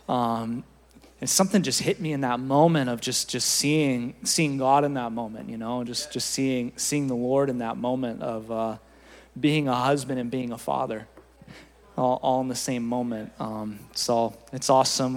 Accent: American